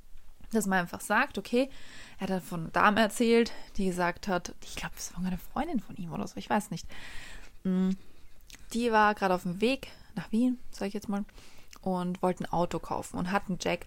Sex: female